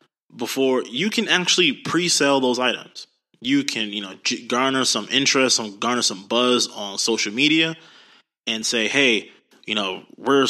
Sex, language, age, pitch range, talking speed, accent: male, English, 20-39, 110-135 Hz, 155 wpm, American